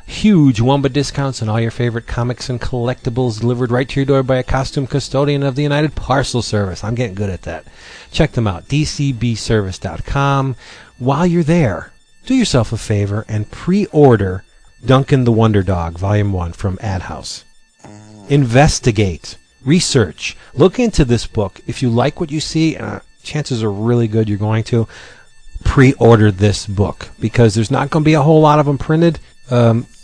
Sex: male